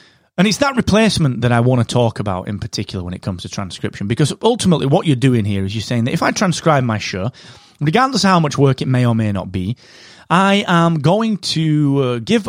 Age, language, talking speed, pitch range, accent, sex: 30-49, English, 235 wpm, 120-170 Hz, British, male